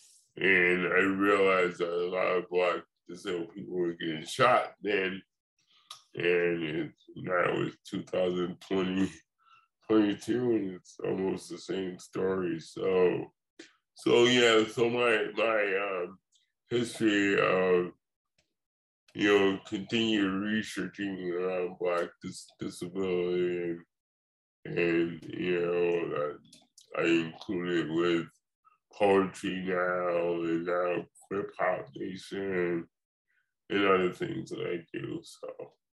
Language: English